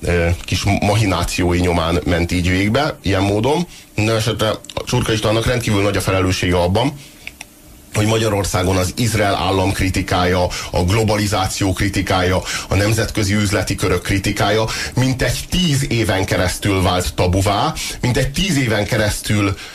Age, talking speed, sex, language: 30-49, 130 wpm, male, Hungarian